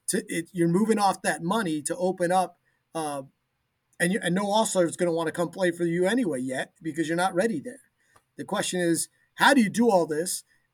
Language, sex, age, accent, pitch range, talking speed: English, male, 30-49, American, 165-230 Hz, 230 wpm